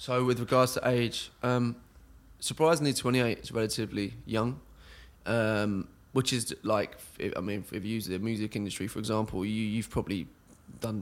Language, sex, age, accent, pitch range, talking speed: English, male, 20-39, British, 105-125 Hz, 165 wpm